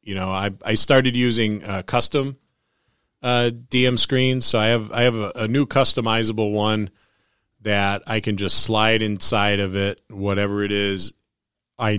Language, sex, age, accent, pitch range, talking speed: English, male, 30-49, American, 100-115 Hz, 165 wpm